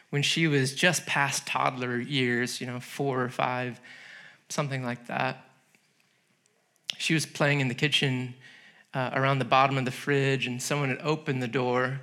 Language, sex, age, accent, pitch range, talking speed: English, male, 30-49, American, 135-170 Hz, 170 wpm